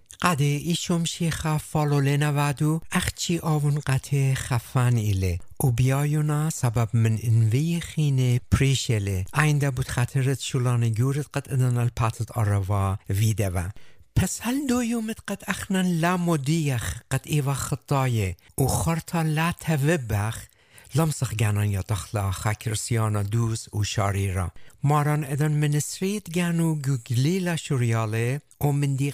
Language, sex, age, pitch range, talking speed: English, male, 60-79, 115-160 Hz, 125 wpm